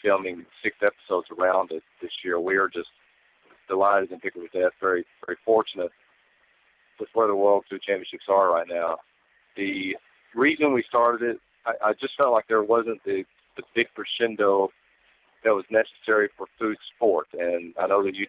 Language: English